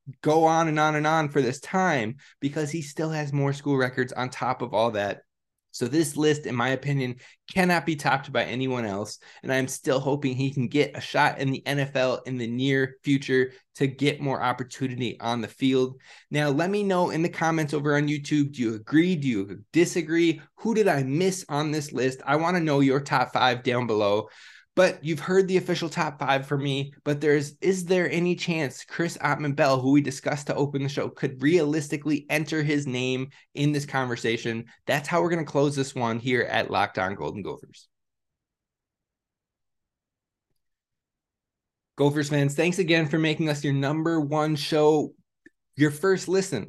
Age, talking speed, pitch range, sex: 20-39, 190 wpm, 135-160 Hz, male